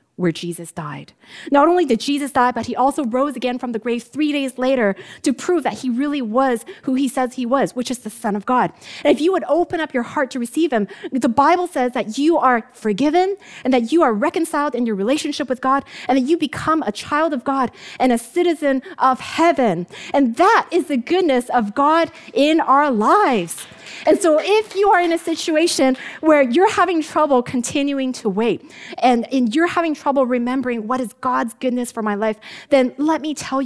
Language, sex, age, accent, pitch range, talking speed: English, female, 30-49, American, 225-300 Hz, 210 wpm